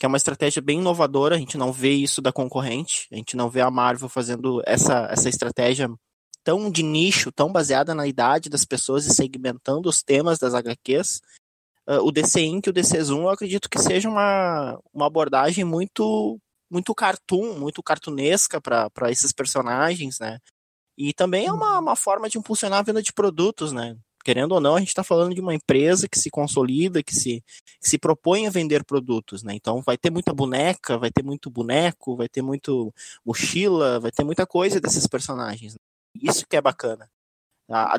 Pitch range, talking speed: 125-175 Hz, 190 wpm